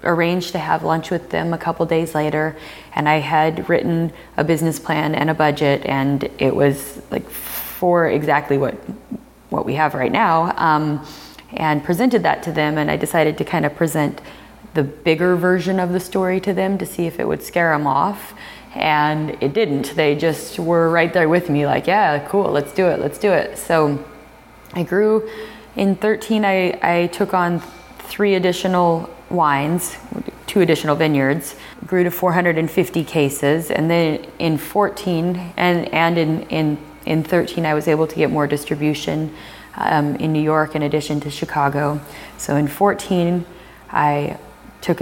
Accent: American